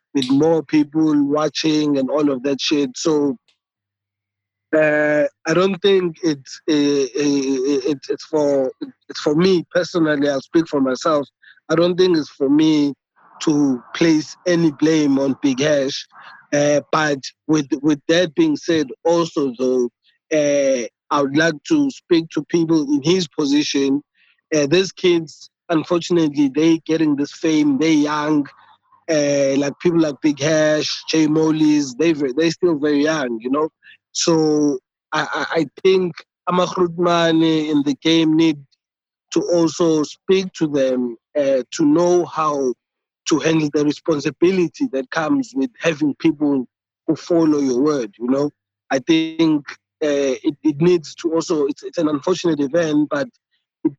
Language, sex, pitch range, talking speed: English, male, 140-170 Hz, 145 wpm